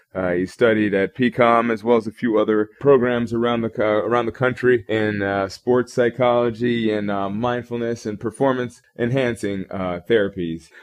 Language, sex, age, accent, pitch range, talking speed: English, male, 20-39, American, 100-125 Hz, 165 wpm